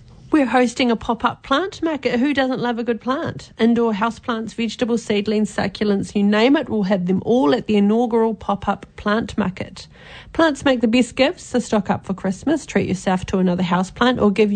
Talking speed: 195 wpm